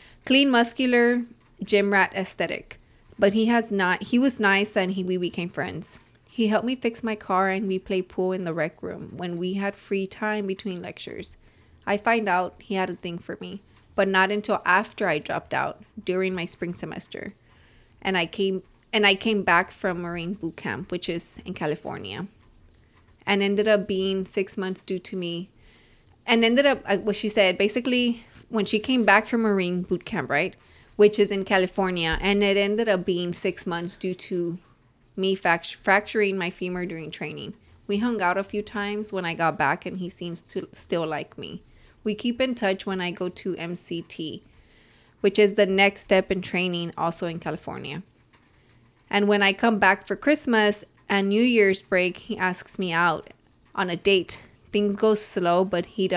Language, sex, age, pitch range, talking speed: English, female, 20-39, 180-210 Hz, 190 wpm